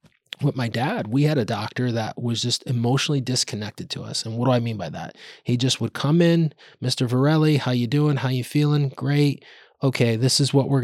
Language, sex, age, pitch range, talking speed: English, male, 20-39, 115-140 Hz, 220 wpm